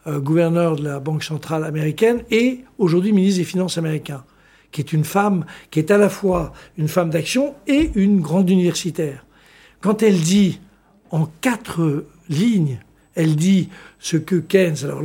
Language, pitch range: French, 160-195 Hz